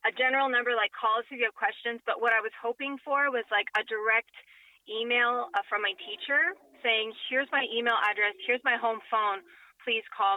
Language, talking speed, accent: English, 195 wpm, American